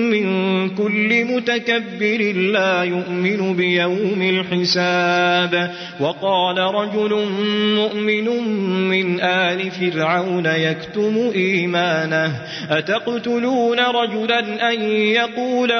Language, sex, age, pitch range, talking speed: Arabic, male, 30-49, 180-225 Hz, 70 wpm